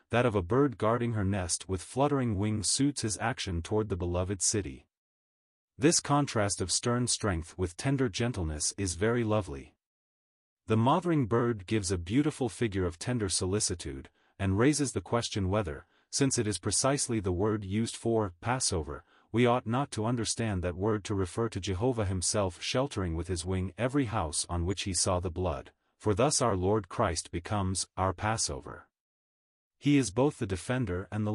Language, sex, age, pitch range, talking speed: English, male, 30-49, 95-120 Hz, 175 wpm